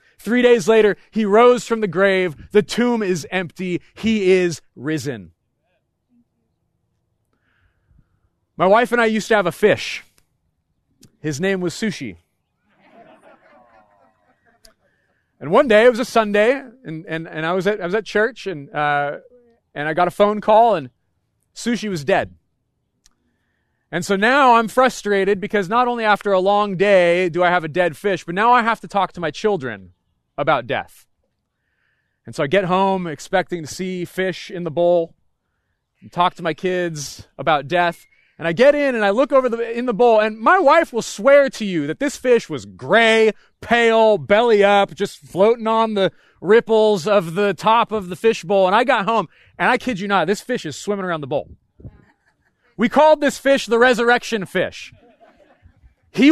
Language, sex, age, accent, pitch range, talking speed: English, male, 30-49, American, 175-230 Hz, 180 wpm